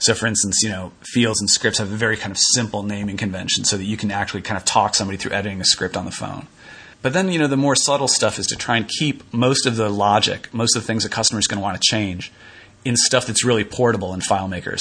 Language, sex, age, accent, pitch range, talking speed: English, male, 30-49, American, 100-120 Hz, 270 wpm